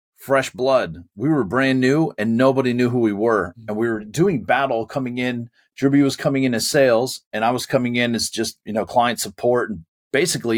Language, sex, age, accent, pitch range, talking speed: English, male, 40-59, American, 105-125 Hz, 215 wpm